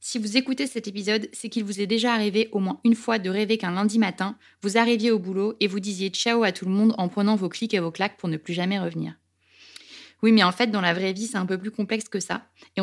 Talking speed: 280 wpm